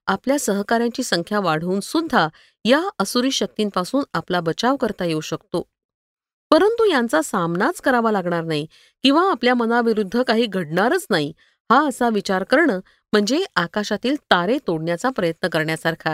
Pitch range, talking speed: 185-270 Hz, 130 wpm